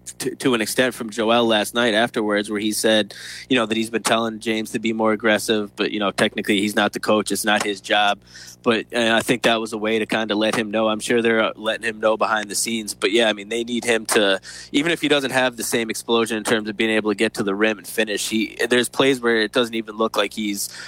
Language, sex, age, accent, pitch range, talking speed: English, male, 20-39, American, 105-115 Hz, 275 wpm